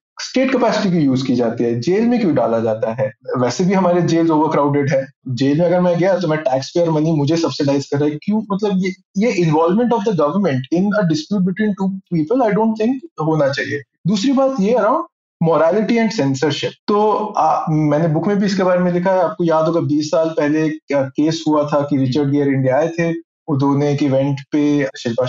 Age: 20-39